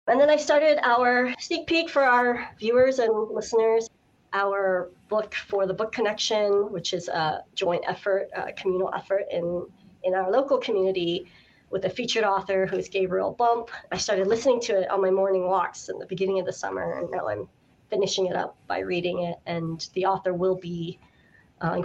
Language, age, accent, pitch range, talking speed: English, 30-49, American, 185-255 Hz, 190 wpm